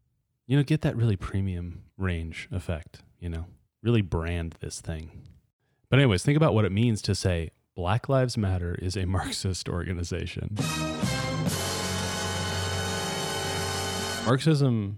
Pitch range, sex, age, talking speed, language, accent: 95-120 Hz, male, 30-49, 125 wpm, English, American